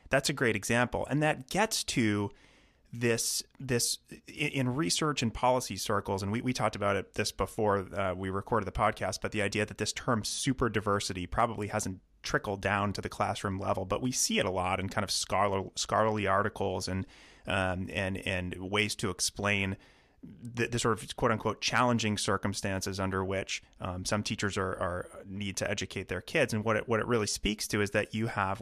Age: 30-49